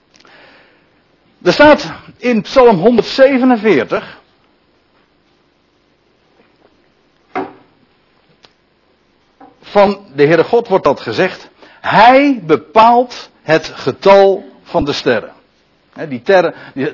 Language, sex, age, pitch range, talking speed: Dutch, male, 60-79, 160-235 Hz, 65 wpm